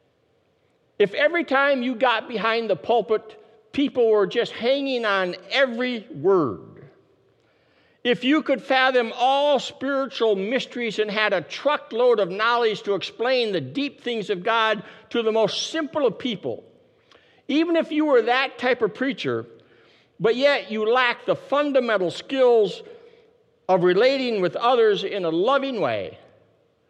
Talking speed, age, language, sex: 145 wpm, 60-79, English, male